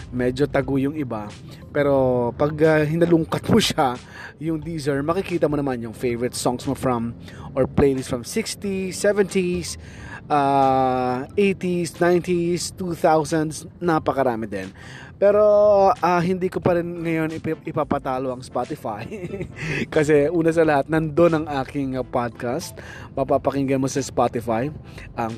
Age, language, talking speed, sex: 20-39, Filipino, 130 wpm, male